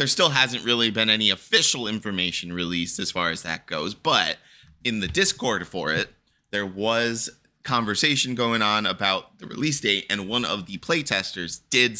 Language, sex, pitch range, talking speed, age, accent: English, male, 95-125 Hz, 180 wpm, 20-39, American